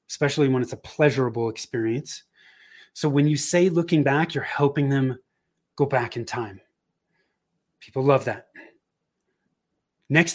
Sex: male